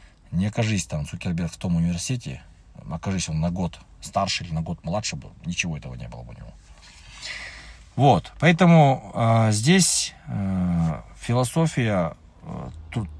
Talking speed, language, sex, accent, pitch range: 145 wpm, Russian, male, native, 85-125 Hz